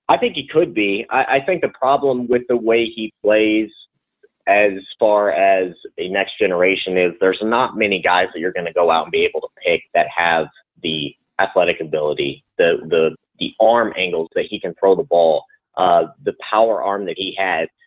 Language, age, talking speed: English, 30-49, 200 wpm